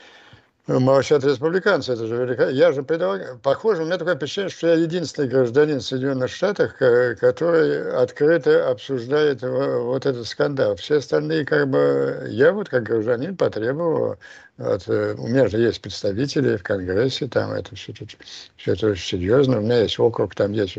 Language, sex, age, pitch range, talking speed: Russian, male, 60-79, 115-165 Hz, 155 wpm